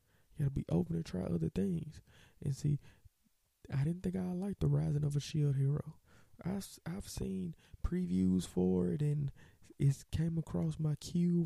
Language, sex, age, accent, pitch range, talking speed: English, male, 20-39, American, 120-160 Hz, 180 wpm